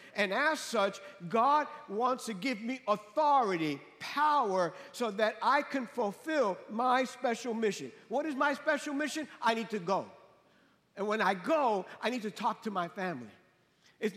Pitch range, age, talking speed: 200-260 Hz, 50-69, 165 wpm